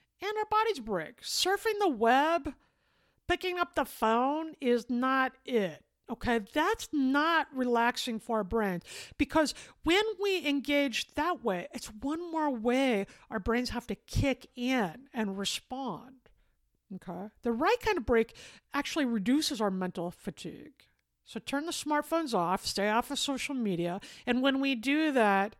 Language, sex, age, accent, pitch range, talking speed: English, female, 50-69, American, 220-290 Hz, 150 wpm